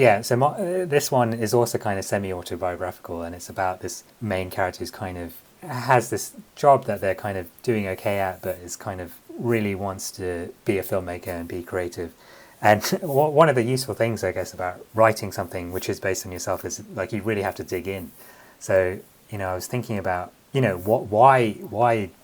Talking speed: 215 wpm